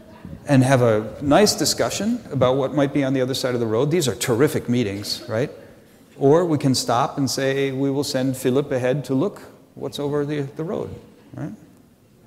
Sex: male